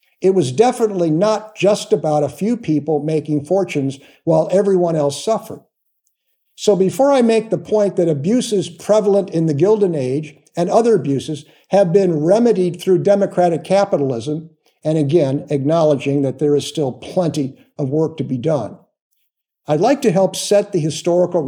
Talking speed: 160 wpm